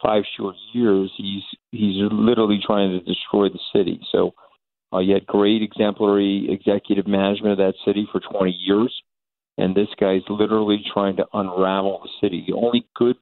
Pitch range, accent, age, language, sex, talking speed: 95-105 Hz, American, 50-69, English, male, 170 wpm